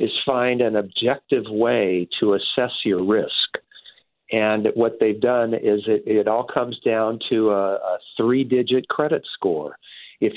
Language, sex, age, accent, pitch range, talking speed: English, male, 50-69, American, 105-130 Hz, 150 wpm